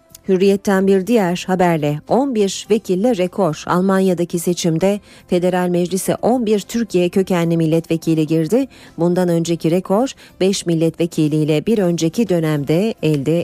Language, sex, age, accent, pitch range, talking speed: Turkish, female, 40-59, native, 165-205 Hz, 110 wpm